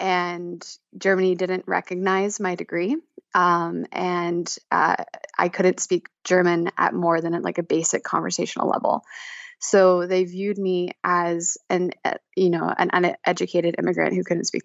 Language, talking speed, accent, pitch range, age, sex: English, 150 wpm, American, 170-185 Hz, 20-39, female